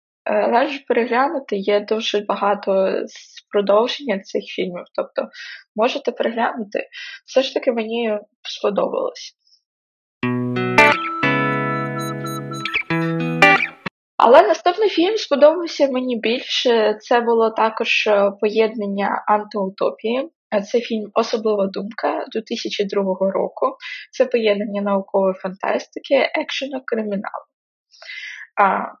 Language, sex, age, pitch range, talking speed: Ukrainian, female, 20-39, 205-270 Hz, 80 wpm